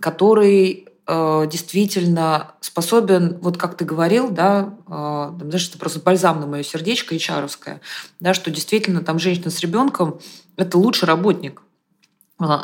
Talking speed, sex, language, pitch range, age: 140 wpm, female, Russian, 165-200 Hz, 20-39